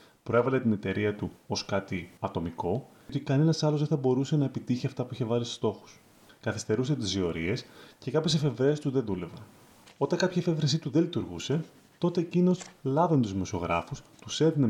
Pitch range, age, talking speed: 110-155 Hz, 30-49, 175 wpm